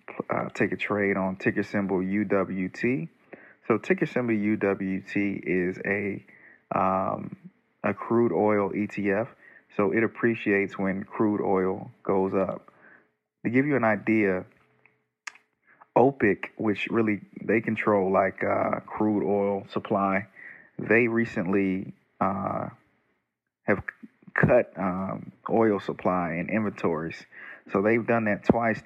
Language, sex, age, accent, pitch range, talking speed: English, male, 30-49, American, 95-110 Hz, 120 wpm